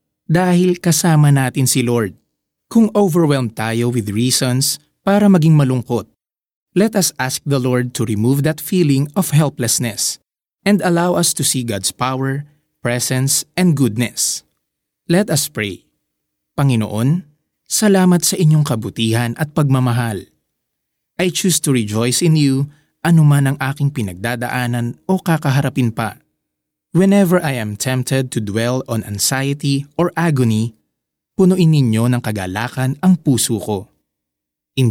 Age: 20-39